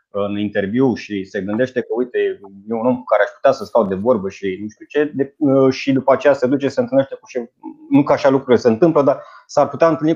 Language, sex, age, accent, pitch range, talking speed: Romanian, male, 30-49, native, 110-145 Hz, 235 wpm